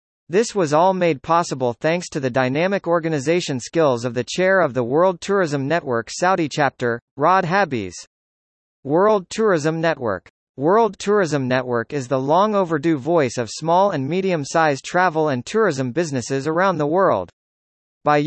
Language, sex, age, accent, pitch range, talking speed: English, male, 40-59, American, 135-180 Hz, 150 wpm